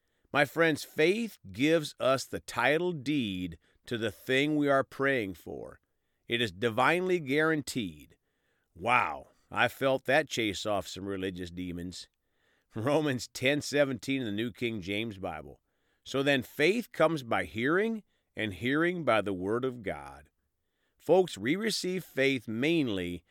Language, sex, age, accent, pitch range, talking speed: English, male, 40-59, American, 100-150 Hz, 140 wpm